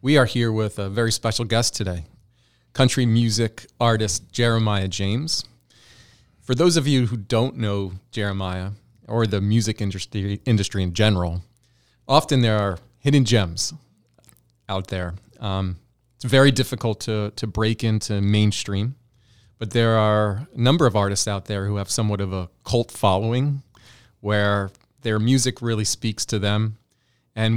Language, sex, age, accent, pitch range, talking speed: English, male, 40-59, American, 100-120 Hz, 150 wpm